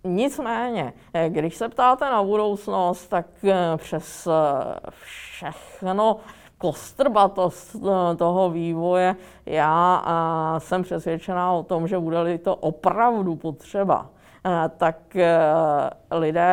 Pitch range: 160-195 Hz